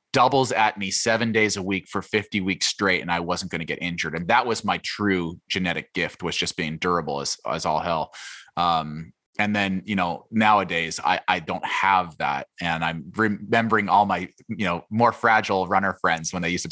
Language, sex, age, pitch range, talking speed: English, male, 30-49, 90-115 Hz, 210 wpm